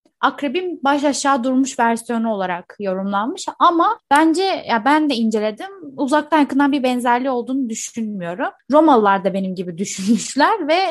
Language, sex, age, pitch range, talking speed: Turkish, female, 20-39, 215-275 Hz, 140 wpm